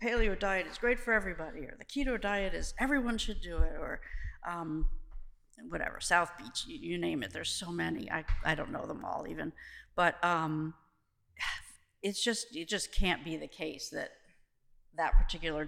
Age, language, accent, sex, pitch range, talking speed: 50-69, English, American, female, 160-200 Hz, 180 wpm